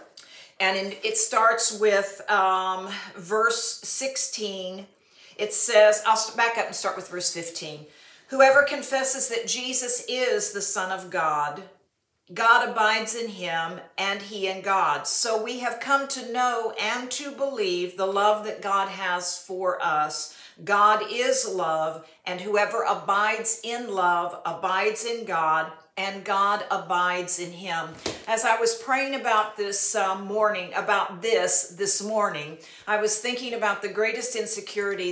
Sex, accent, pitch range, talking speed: female, American, 190-230 Hz, 145 wpm